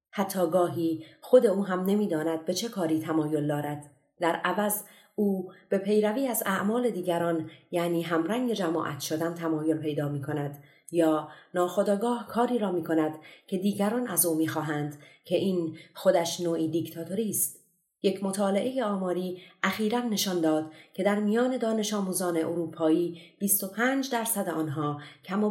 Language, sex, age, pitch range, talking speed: Persian, female, 30-49, 160-200 Hz, 145 wpm